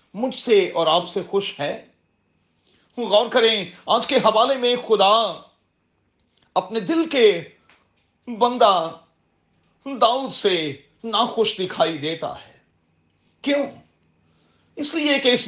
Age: 40-59